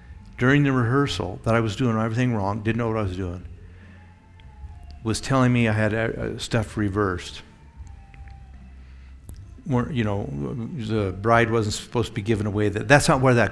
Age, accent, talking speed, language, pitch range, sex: 60-79, American, 175 wpm, English, 95-115 Hz, male